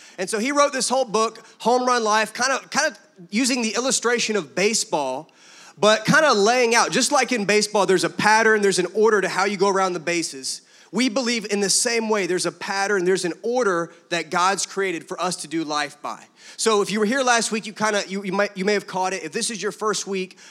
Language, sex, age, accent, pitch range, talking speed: English, male, 30-49, American, 185-215 Hz, 250 wpm